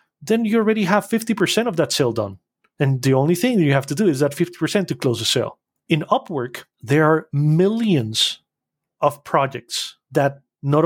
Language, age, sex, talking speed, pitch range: English, 30-49, male, 190 wpm, 125-165 Hz